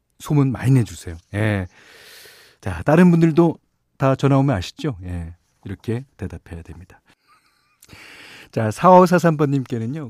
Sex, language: male, Korean